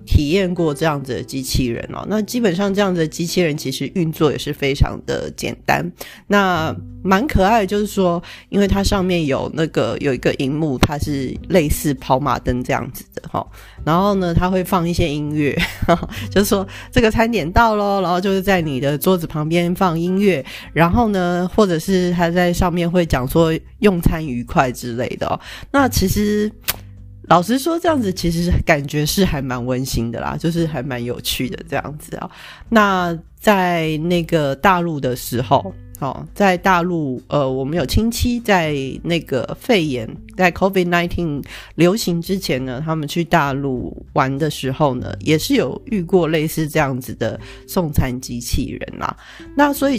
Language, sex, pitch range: Chinese, female, 135-185 Hz